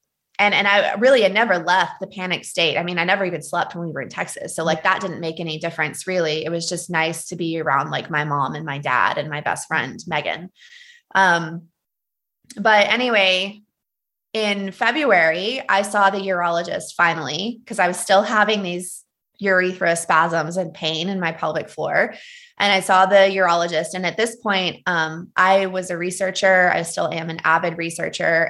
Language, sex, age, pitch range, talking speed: English, female, 20-39, 165-190 Hz, 190 wpm